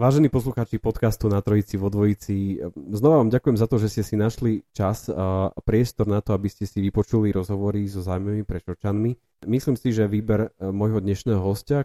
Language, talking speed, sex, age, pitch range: Slovak, 180 wpm, male, 30-49, 100-115 Hz